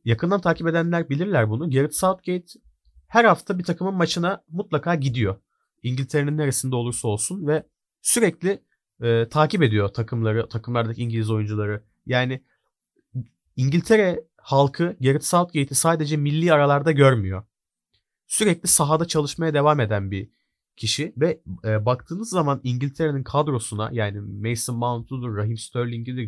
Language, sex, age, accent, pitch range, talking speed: Turkish, male, 40-59, native, 115-155 Hz, 125 wpm